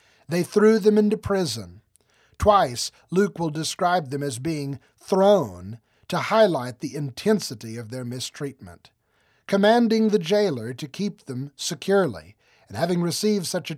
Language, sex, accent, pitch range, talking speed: English, male, American, 125-180 Hz, 140 wpm